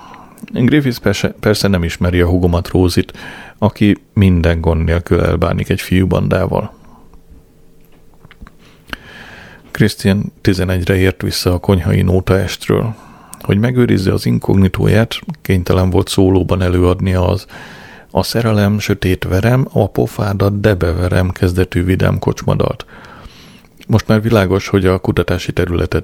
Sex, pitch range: male, 90-105 Hz